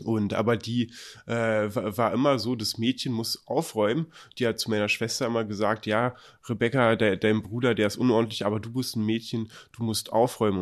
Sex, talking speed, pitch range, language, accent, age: male, 190 wpm, 100-120 Hz, German, German, 30-49